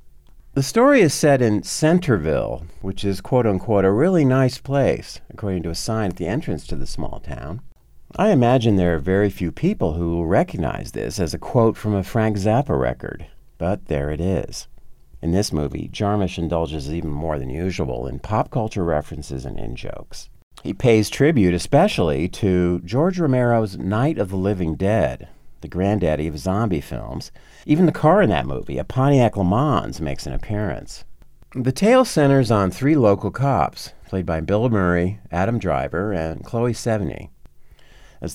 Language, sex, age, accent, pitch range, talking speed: English, male, 50-69, American, 85-120 Hz, 170 wpm